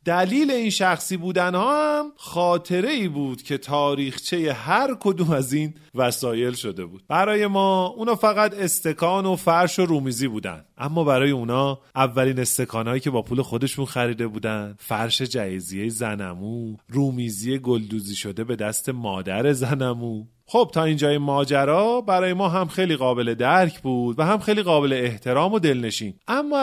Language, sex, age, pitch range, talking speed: Persian, male, 30-49, 120-170 Hz, 155 wpm